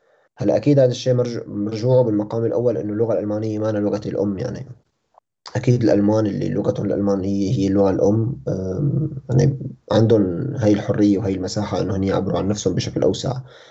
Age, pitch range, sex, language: 20-39, 105-125 Hz, male, Arabic